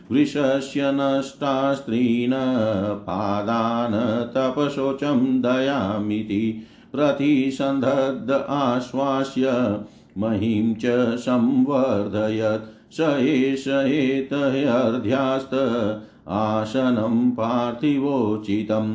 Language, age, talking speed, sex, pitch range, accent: Hindi, 50-69, 45 wpm, male, 110-140 Hz, native